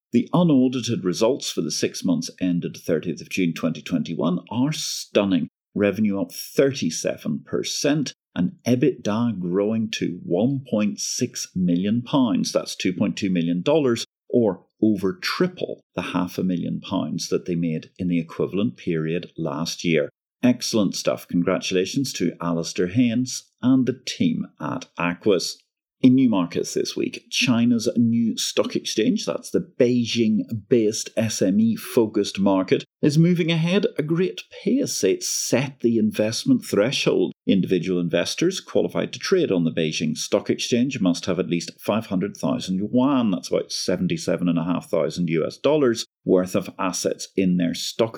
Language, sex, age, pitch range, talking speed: English, male, 50-69, 90-130 Hz, 135 wpm